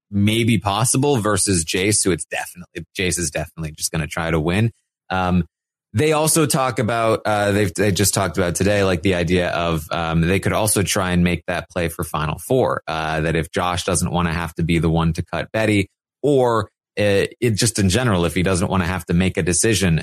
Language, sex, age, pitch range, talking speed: English, male, 30-49, 90-115 Hz, 225 wpm